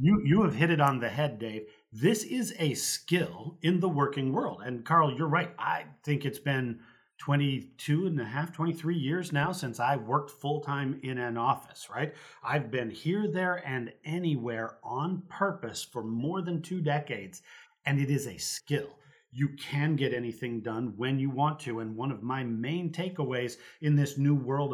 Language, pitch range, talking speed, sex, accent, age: English, 125-160 Hz, 190 wpm, male, American, 40-59